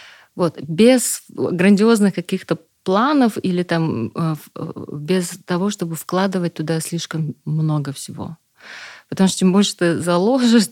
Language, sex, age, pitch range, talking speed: German, female, 30-49, 160-190 Hz, 120 wpm